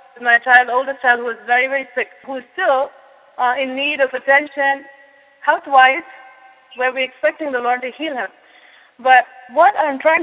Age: 30-49